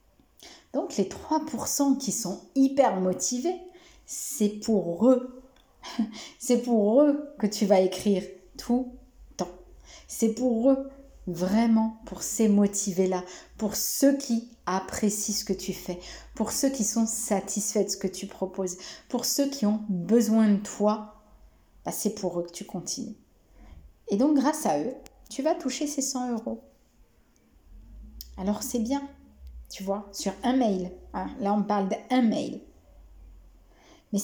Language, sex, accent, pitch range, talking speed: French, female, French, 195-255 Hz, 145 wpm